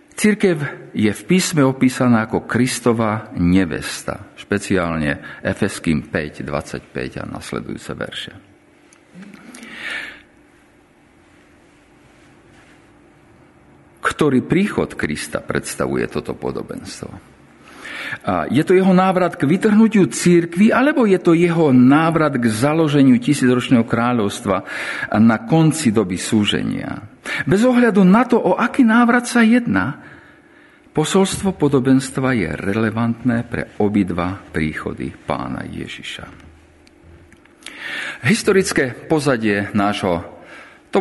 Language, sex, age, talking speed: Slovak, male, 50-69, 90 wpm